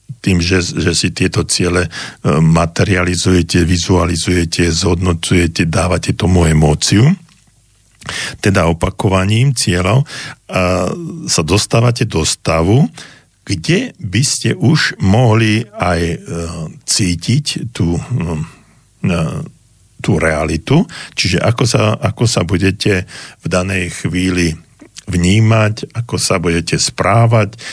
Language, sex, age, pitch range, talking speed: Slovak, male, 60-79, 90-115 Hz, 95 wpm